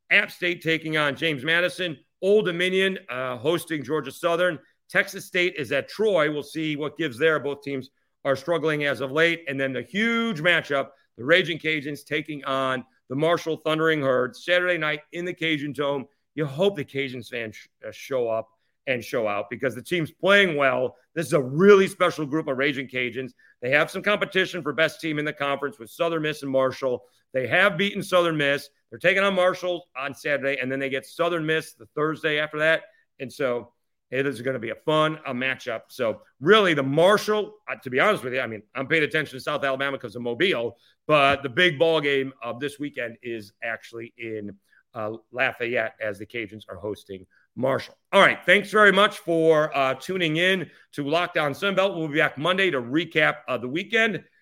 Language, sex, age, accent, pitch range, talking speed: English, male, 40-59, American, 130-175 Hz, 200 wpm